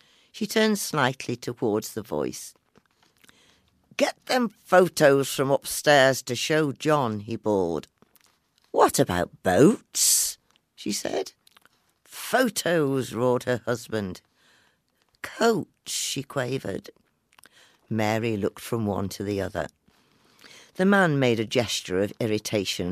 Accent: British